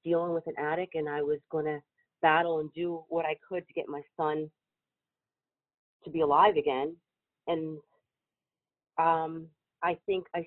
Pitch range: 155-175 Hz